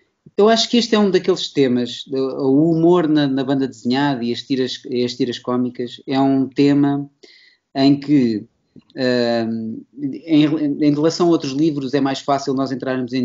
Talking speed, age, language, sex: 175 wpm, 20-39, Portuguese, male